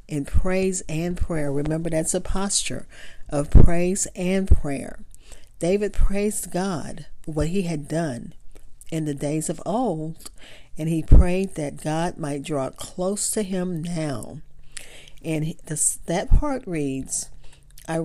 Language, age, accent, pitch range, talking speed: English, 40-59, American, 150-195 Hz, 140 wpm